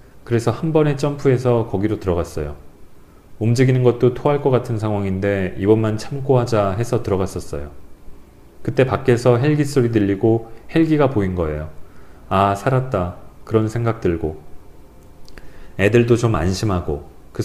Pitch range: 90-120 Hz